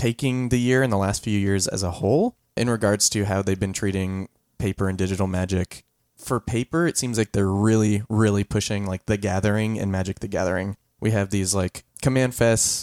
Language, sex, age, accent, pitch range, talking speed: English, male, 20-39, American, 95-115 Hz, 205 wpm